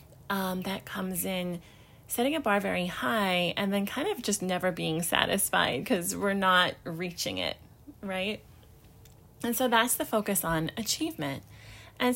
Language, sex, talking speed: English, female, 155 wpm